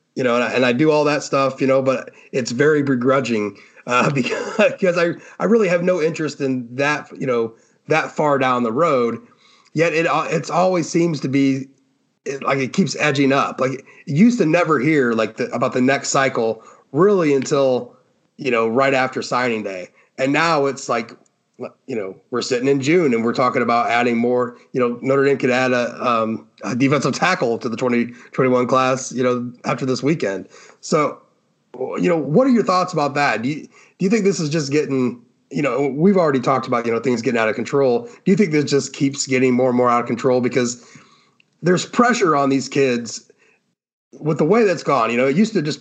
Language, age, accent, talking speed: English, 30-49, American, 210 wpm